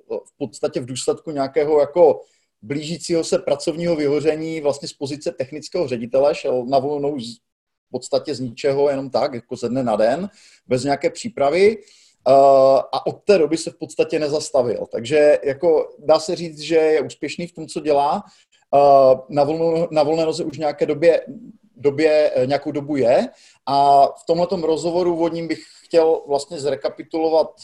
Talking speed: 160 wpm